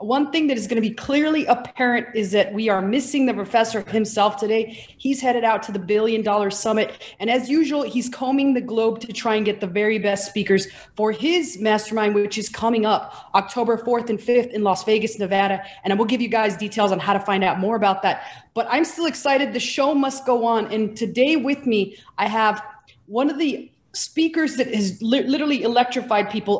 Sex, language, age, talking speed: female, English, 30-49, 215 wpm